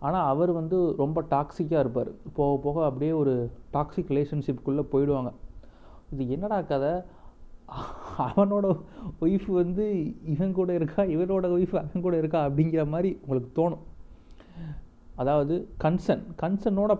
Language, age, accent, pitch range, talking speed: Tamil, 30-49, native, 130-170 Hz, 125 wpm